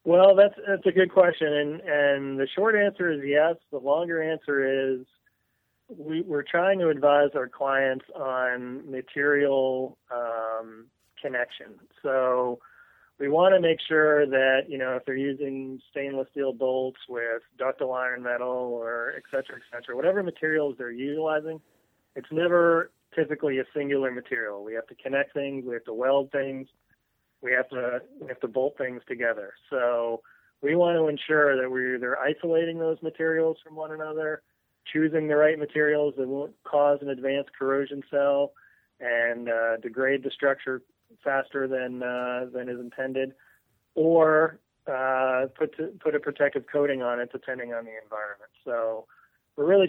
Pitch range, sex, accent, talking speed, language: 125-155 Hz, male, American, 160 wpm, English